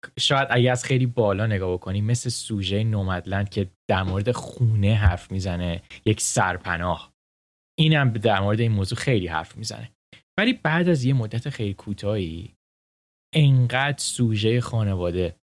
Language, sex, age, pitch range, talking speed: Persian, male, 10-29, 95-125 Hz, 140 wpm